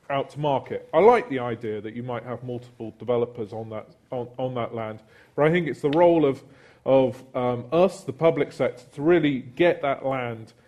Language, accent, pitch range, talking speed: English, British, 120-155 Hz, 210 wpm